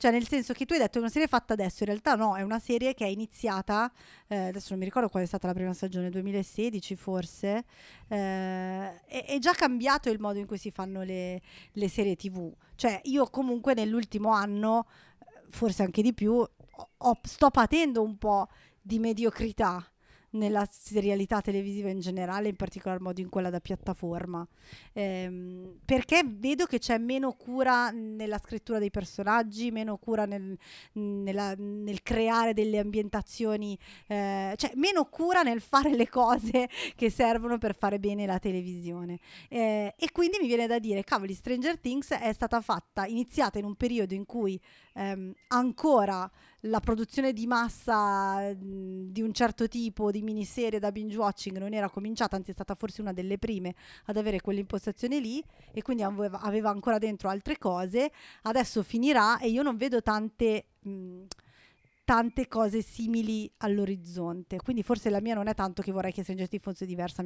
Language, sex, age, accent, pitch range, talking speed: Italian, female, 30-49, native, 195-235 Hz, 170 wpm